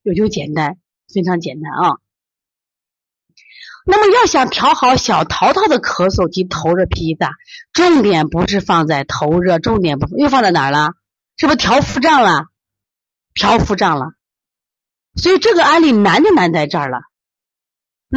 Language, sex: Chinese, female